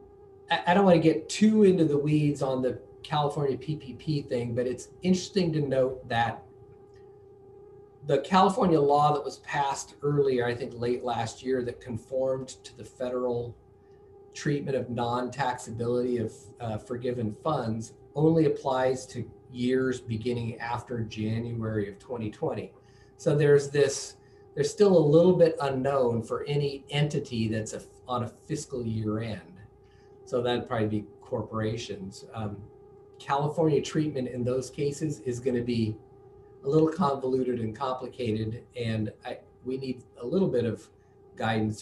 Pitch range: 120-160 Hz